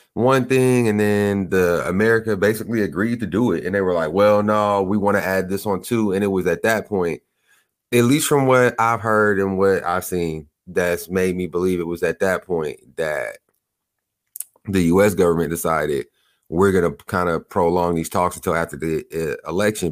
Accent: American